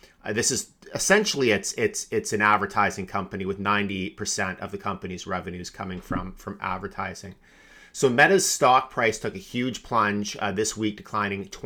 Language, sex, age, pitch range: English, male, 30-49, 100-115 Hz